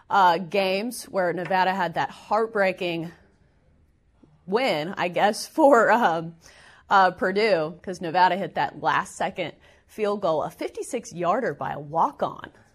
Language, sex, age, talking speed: English, female, 30-49, 120 wpm